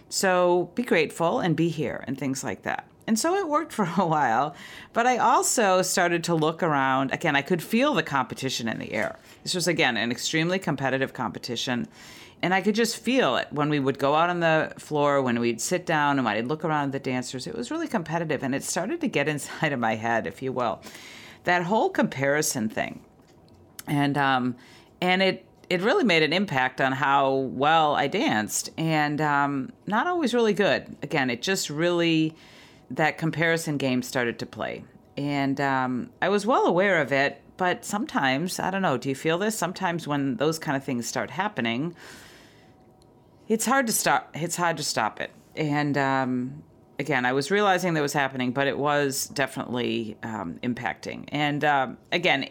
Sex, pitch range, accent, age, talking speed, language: female, 130-185 Hz, American, 40-59, 190 wpm, English